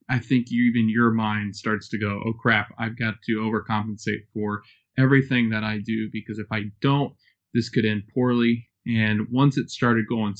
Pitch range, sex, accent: 105-115 Hz, male, American